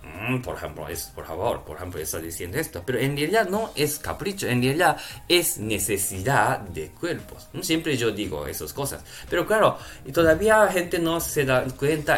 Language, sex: Japanese, male